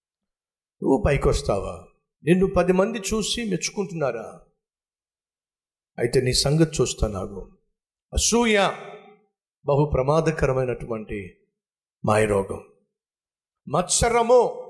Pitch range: 160-215 Hz